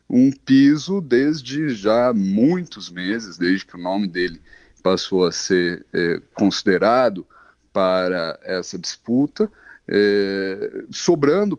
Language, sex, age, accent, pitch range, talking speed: Portuguese, male, 40-59, Brazilian, 95-155 Hz, 100 wpm